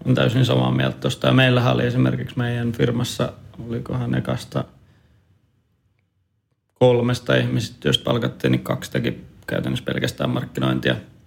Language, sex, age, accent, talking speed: Finnish, male, 30-49, native, 105 wpm